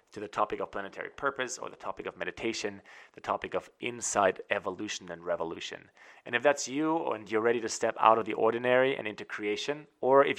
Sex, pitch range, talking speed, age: male, 100-125 Hz, 210 wpm, 30-49